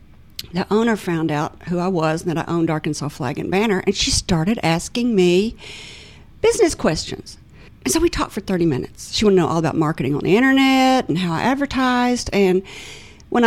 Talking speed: 200 wpm